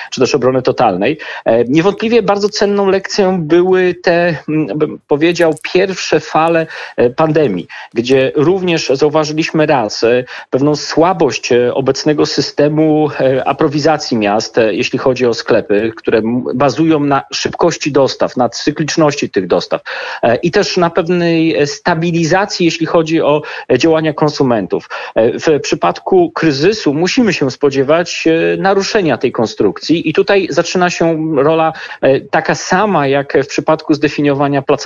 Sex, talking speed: male, 115 wpm